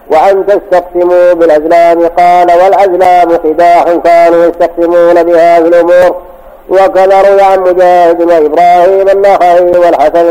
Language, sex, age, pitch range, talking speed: Arabic, male, 50-69, 170-185 Hz, 95 wpm